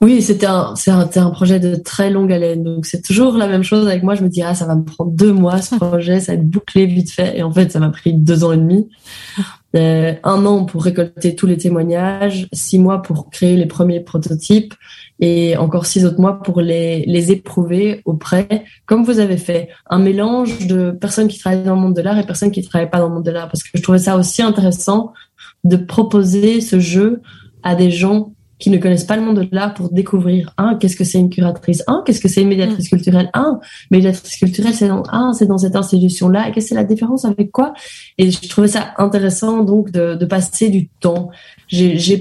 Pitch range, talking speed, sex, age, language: 175-200 Hz, 240 wpm, female, 20-39, French